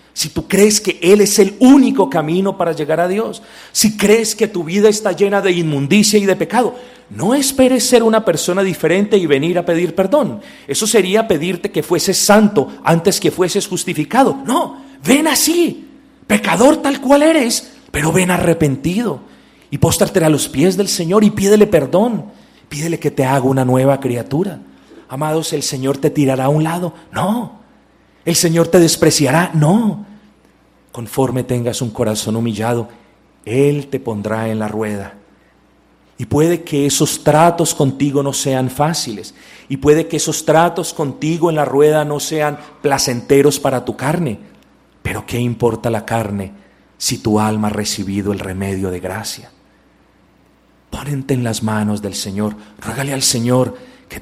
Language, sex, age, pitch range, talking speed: Spanish, male, 40-59, 125-195 Hz, 160 wpm